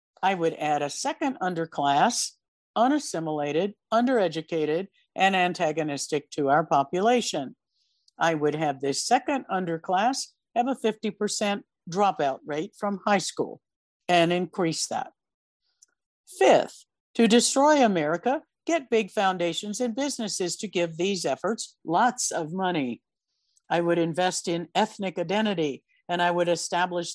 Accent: American